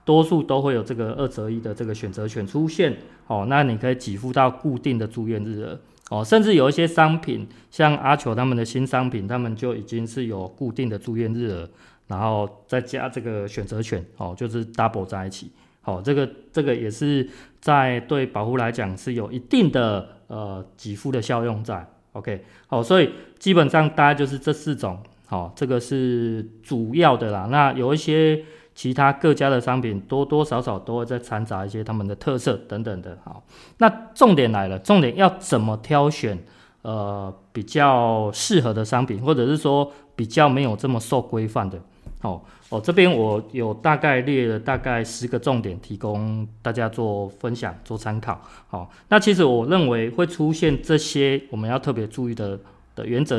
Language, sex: Chinese, male